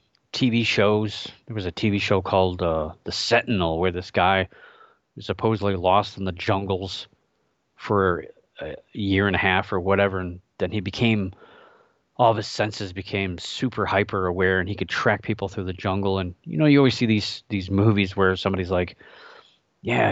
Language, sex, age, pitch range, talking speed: English, male, 30-49, 95-115 Hz, 180 wpm